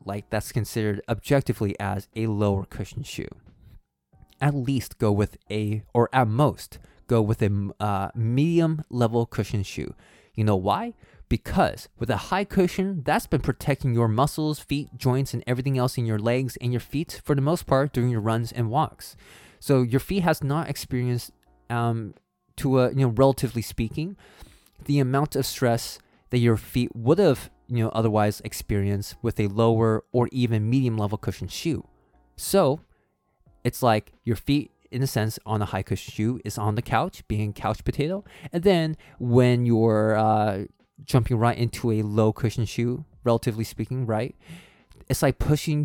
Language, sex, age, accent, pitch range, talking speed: English, male, 20-39, American, 105-135 Hz, 170 wpm